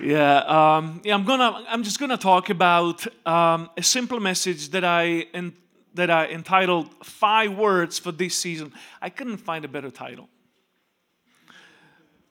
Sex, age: male, 40-59